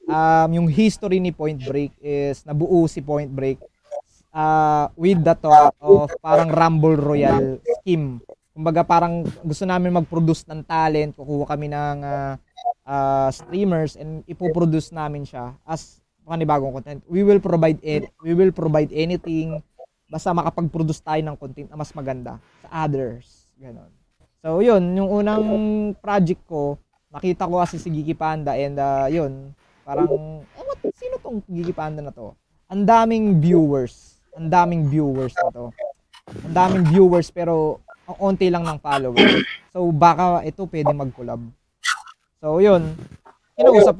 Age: 20-39